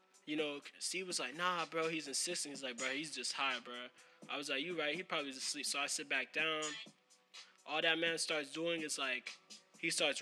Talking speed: 230 wpm